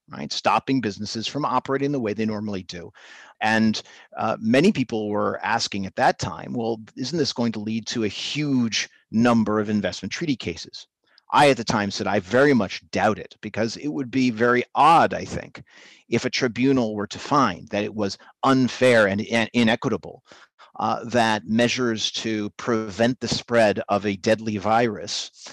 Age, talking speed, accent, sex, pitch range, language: 40-59, 175 wpm, American, male, 105-125 Hz, English